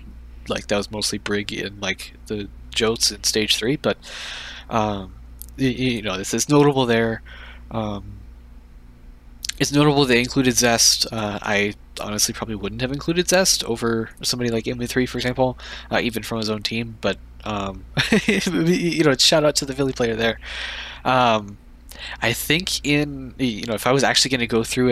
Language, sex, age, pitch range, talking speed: English, male, 20-39, 100-125 Hz, 175 wpm